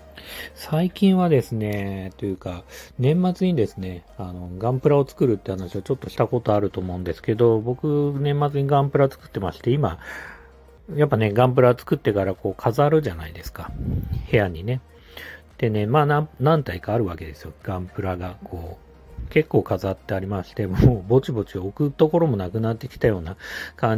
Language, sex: Japanese, male